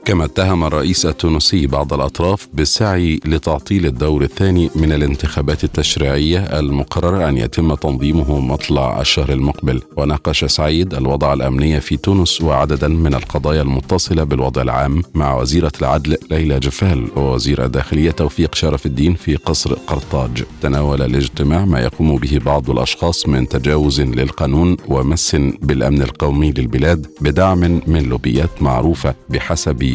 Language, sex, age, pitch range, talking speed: Arabic, male, 50-69, 70-85 Hz, 130 wpm